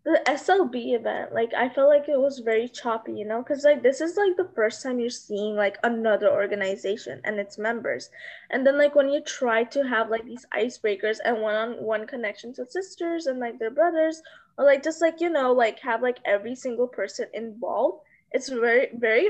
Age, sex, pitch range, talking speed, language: 10-29, female, 220-290 Hz, 200 wpm, English